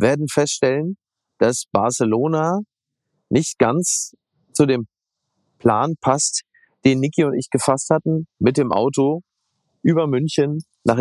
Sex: male